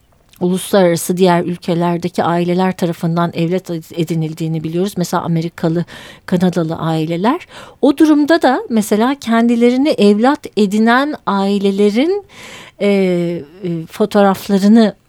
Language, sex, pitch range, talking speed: Turkish, female, 175-235 Hz, 90 wpm